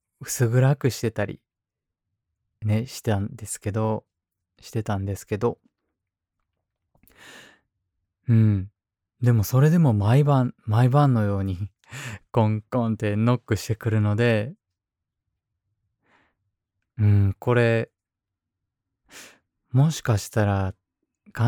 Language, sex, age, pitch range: Japanese, male, 20-39, 100-125 Hz